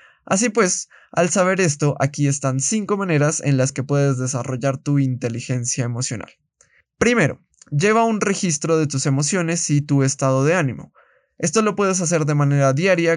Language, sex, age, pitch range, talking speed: Spanish, male, 20-39, 130-170 Hz, 165 wpm